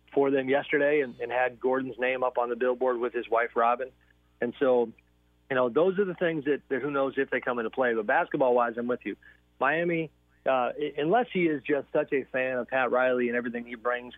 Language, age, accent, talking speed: English, 40-59, American, 230 wpm